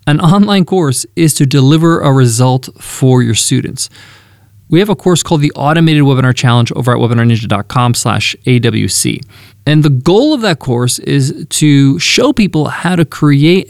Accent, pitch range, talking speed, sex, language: American, 125-165 Hz, 165 wpm, male, English